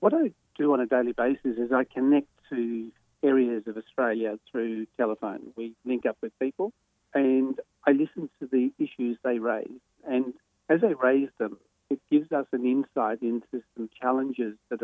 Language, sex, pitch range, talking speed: English, male, 110-130 Hz, 175 wpm